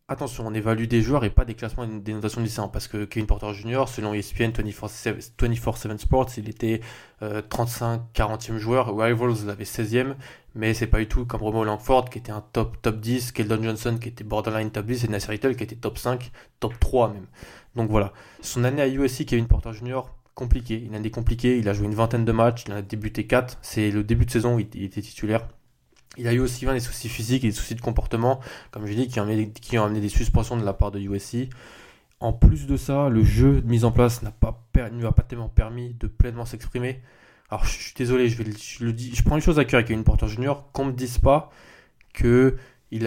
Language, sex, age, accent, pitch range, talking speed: French, male, 20-39, French, 110-125 Hz, 240 wpm